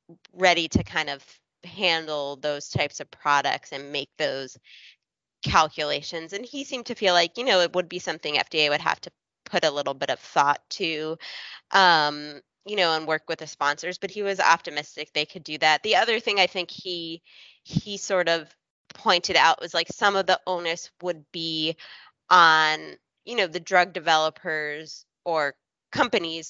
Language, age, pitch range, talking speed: English, 20-39, 150-180 Hz, 180 wpm